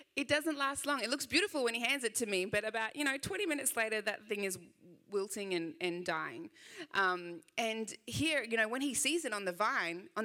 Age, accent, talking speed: 20-39, Australian, 235 wpm